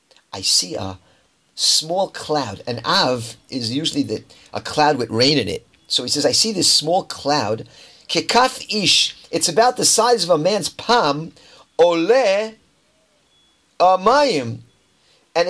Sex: male